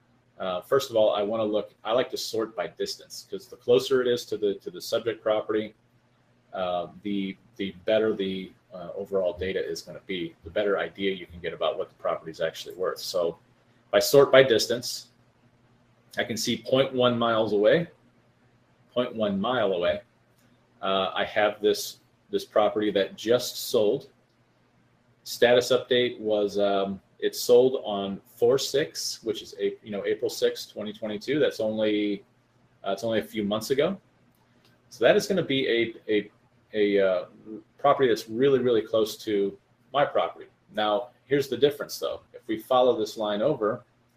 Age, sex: 30-49, male